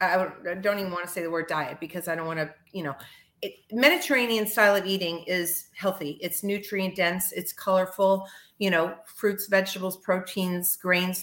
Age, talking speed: 40-59, 175 wpm